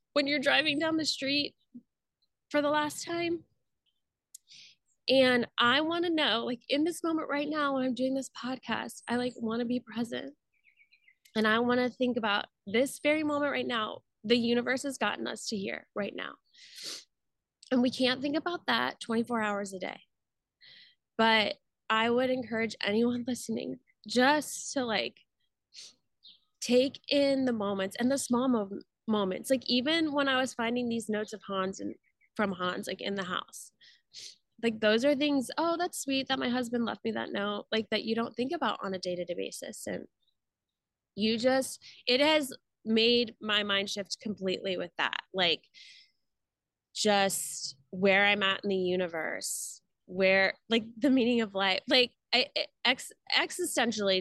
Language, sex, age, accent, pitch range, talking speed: English, female, 10-29, American, 210-285 Hz, 165 wpm